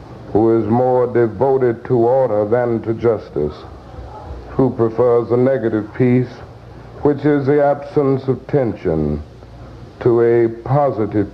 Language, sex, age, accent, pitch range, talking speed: English, male, 60-79, American, 115-130 Hz, 120 wpm